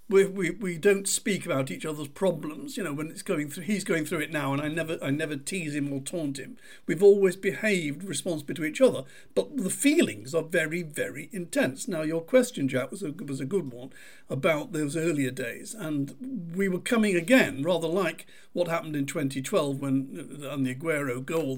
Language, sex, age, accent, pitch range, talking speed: English, male, 50-69, British, 145-195 Hz, 205 wpm